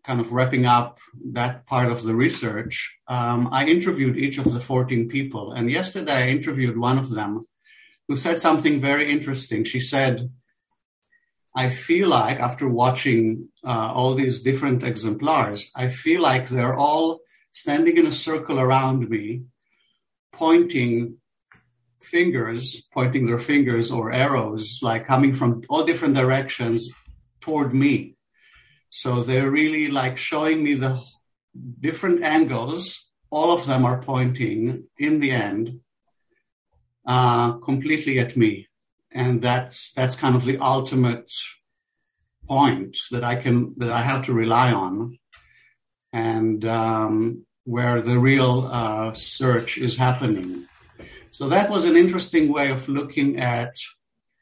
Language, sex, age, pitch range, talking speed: English, male, 60-79, 120-140 Hz, 135 wpm